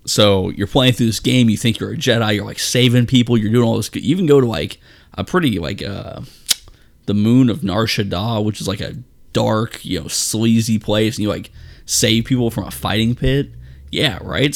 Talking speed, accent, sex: 220 wpm, American, male